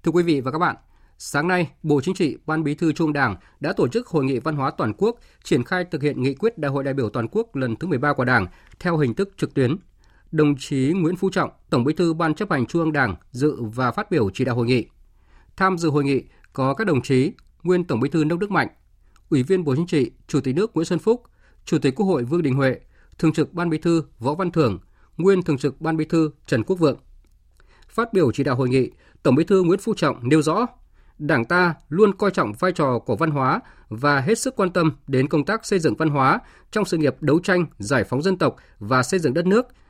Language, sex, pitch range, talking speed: Vietnamese, male, 135-180 Hz, 255 wpm